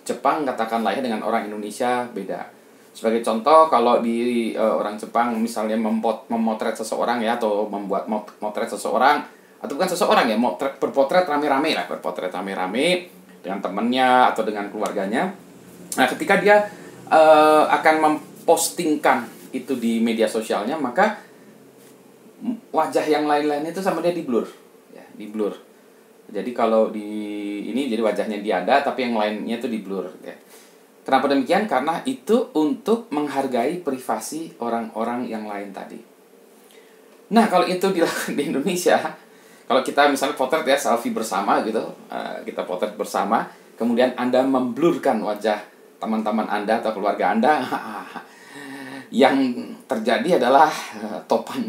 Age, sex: 30-49, male